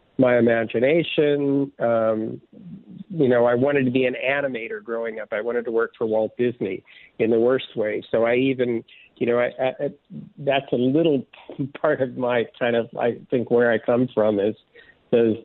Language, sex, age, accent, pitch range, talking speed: English, male, 50-69, American, 115-140 Hz, 185 wpm